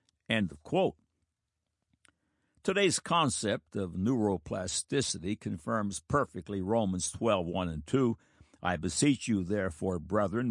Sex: male